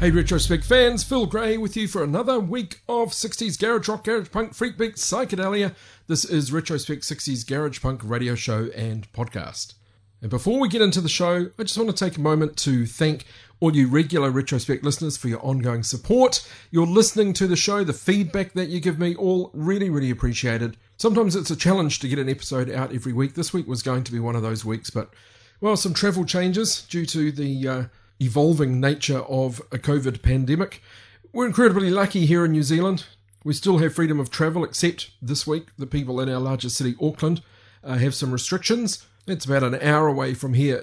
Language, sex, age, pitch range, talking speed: English, male, 40-59, 125-180 Hz, 205 wpm